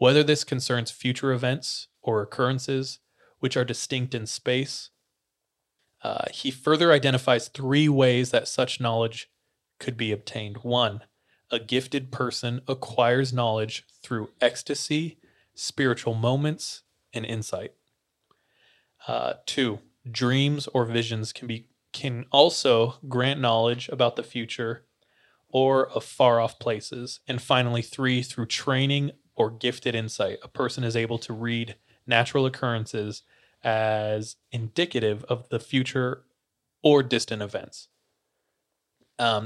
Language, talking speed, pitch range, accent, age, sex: English, 125 wpm, 115-135 Hz, American, 20-39, male